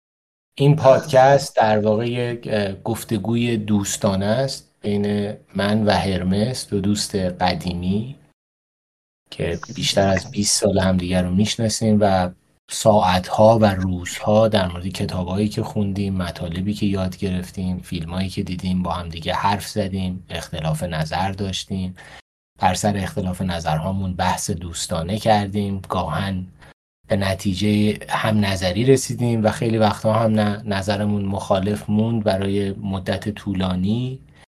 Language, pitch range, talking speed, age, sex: Persian, 90-110 Hz, 125 wpm, 30-49, male